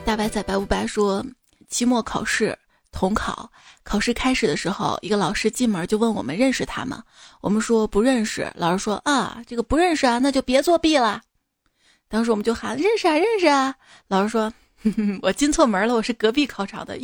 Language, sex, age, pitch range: Chinese, female, 20-39, 210-270 Hz